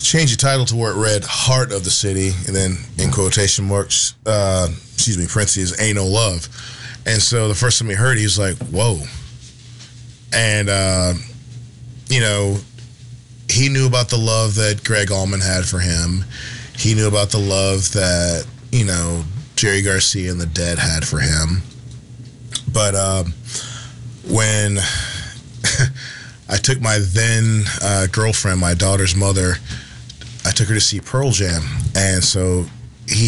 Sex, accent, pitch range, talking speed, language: male, American, 100-120 Hz, 155 wpm, English